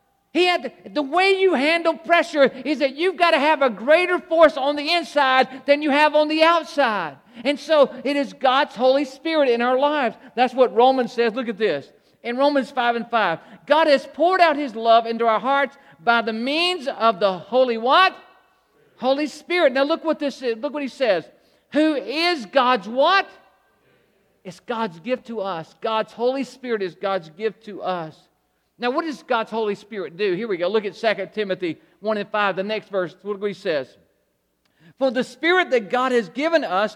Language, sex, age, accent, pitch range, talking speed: English, male, 50-69, American, 210-290 Hz, 190 wpm